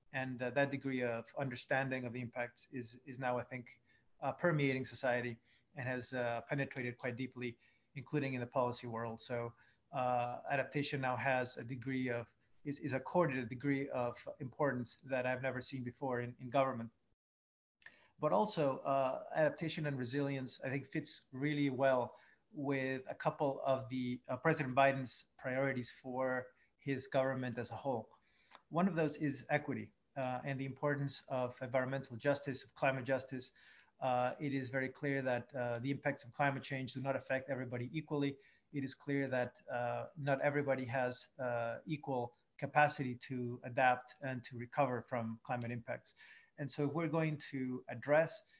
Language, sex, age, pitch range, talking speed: English, male, 30-49, 125-140 Hz, 165 wpm